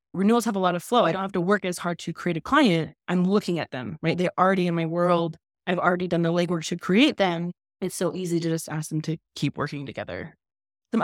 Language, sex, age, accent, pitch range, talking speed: English, female, 20-39, American, 165-200 Hz, 255 wpm